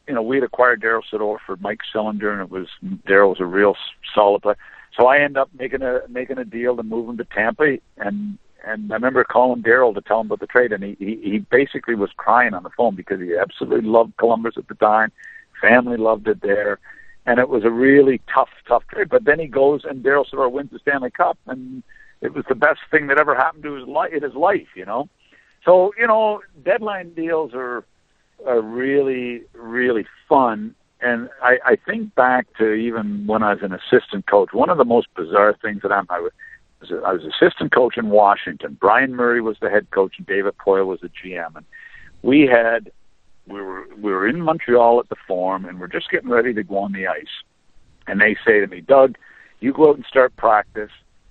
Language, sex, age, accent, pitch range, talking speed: English, male, 60-79, American, 110-155 Hz, 220 wpm